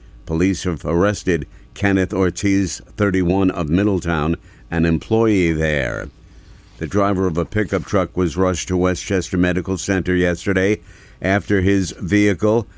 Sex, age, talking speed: male, 50-69, 125 wpm